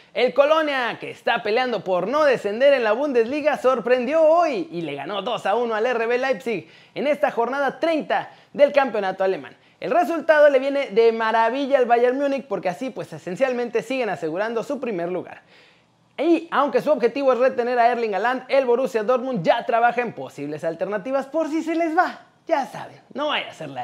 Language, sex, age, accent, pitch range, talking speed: Spanish, male, 30-49, Mexican, 225-275 Hz, 190 wpm